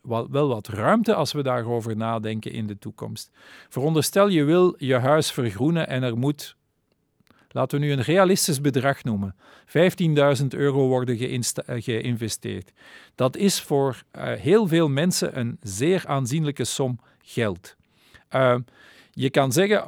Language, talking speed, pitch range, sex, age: Dutch, 140 wpm, 120-155 Hz, male, 50-69